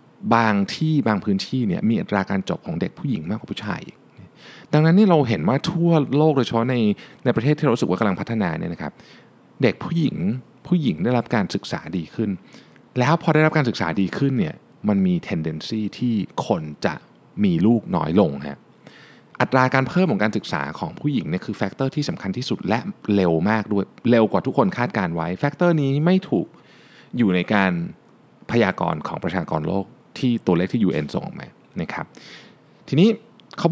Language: Thai